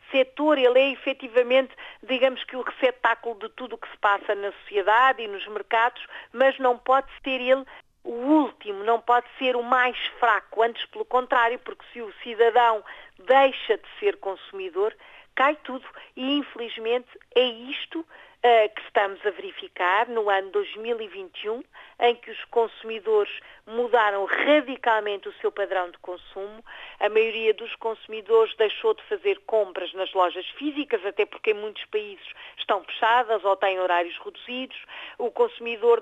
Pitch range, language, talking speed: 225-320 Hz, Portuguese, 150 wpm